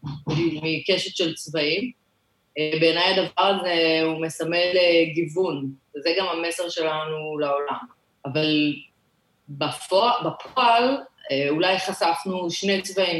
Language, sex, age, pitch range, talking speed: Hebrew, female, 20-39, 155-205 Hz, 95 wpm